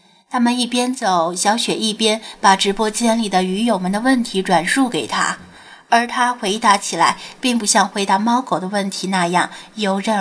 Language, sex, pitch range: Chinese, female, 190-240 Hz